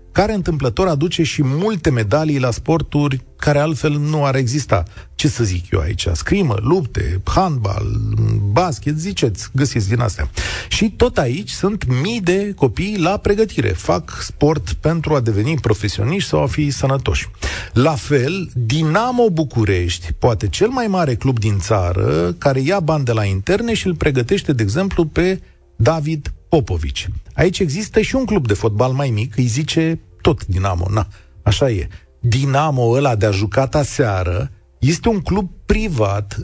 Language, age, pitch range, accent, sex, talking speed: Romanian, 40-59, 105-165 Hz, native, male, 160 wpm